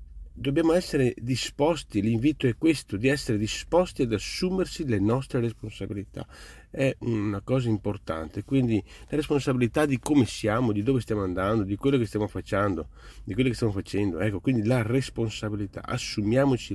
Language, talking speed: Italian, 155 wpm